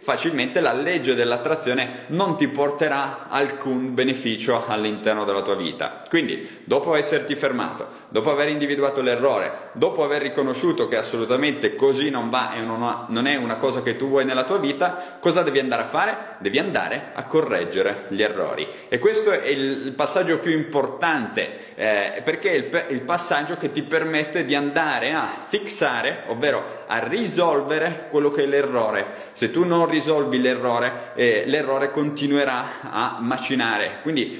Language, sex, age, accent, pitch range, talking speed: Italian, male, 20-39, native, 125-175 Hz, 155 wpm